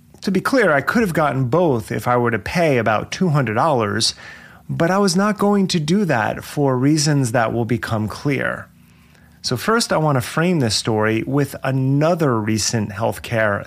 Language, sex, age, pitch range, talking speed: English, male, 30-49, 110-155 Hz, 180 wpm